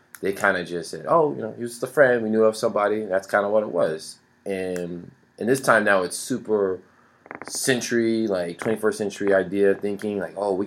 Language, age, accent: English, 20-39, American